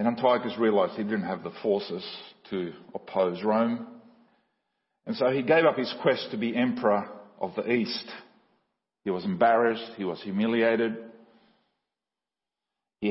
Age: 50-69